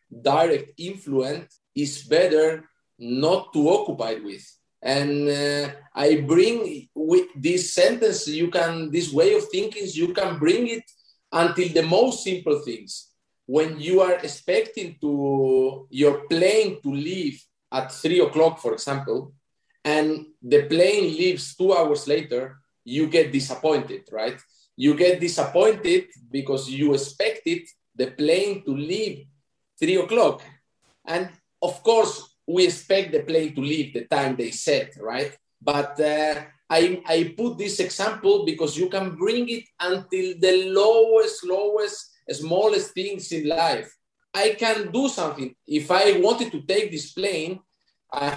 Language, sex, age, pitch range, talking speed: Finnish, male, 40-59, 145-205 Hz, 140 wpm